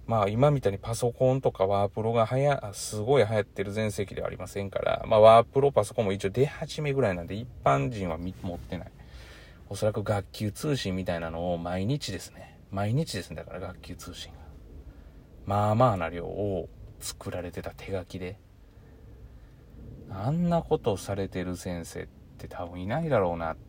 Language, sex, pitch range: Japanese, male, 85-115 Hz